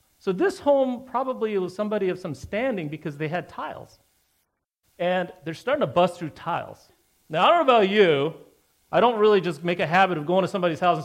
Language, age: English, 40-59